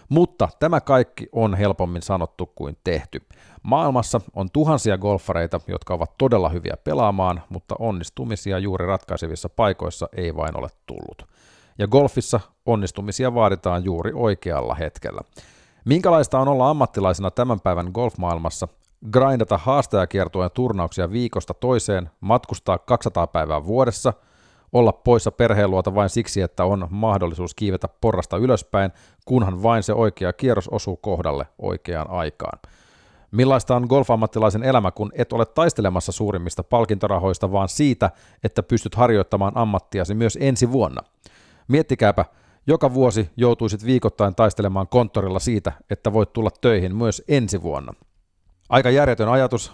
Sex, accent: male, native